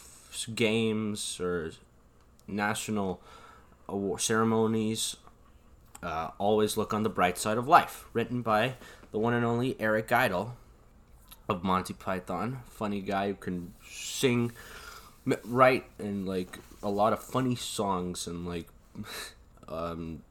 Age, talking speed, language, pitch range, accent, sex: 20-39, 120 wpm, English, 90-110 Hz, American, male